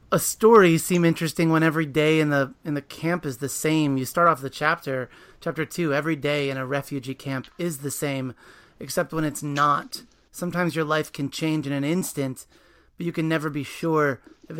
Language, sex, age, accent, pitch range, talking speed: English, male, 30-49, American, 140-165 Hz, 205 wpm